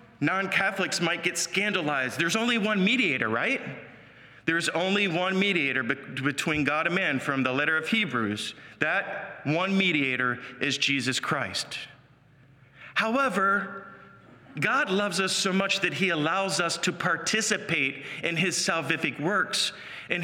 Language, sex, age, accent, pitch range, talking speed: English, male, 40-59, American, 135-180 Hz, 135 wpm